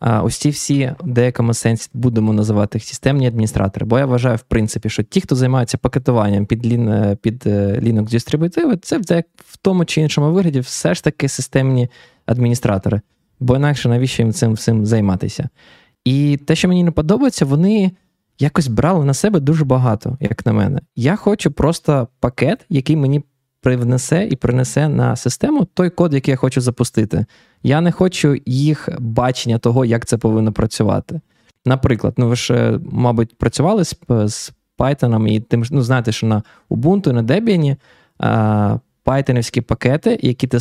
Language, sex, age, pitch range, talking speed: Ukrainian, male, 20-39, 115-145 Hz, 160 wpm